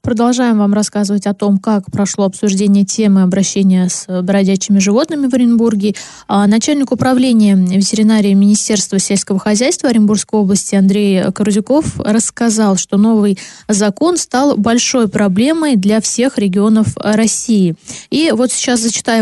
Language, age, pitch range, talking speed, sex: Russian, 20-39, 205-250 Hz, 125 wpm, female